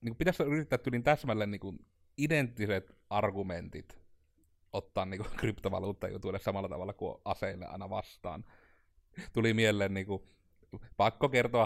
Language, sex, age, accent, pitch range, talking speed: Finnish, male, 30-49, native, 95-110 Hz, 115 wpm